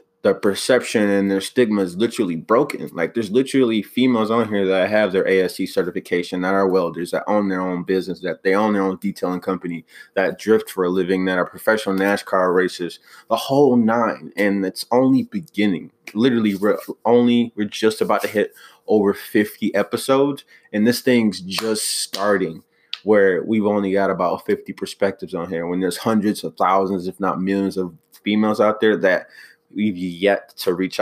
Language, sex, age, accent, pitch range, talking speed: English, male, 20-39, American, 95-110 Hz, 180 wpm